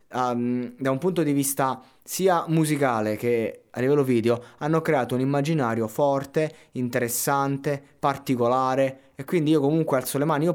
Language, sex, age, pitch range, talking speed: Italian, male, 20-39, 120-160 Hz, 150 wpm